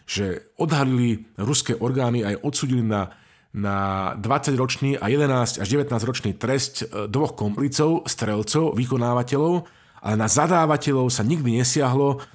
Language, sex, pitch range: Slovak, male, 110-135 Hz